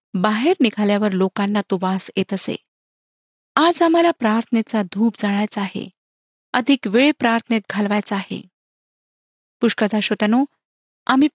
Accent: native